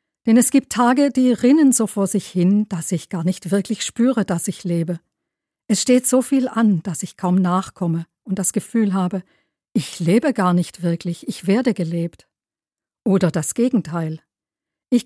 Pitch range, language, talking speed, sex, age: 175-225 Hz, German, 175 wpm, female, 50-69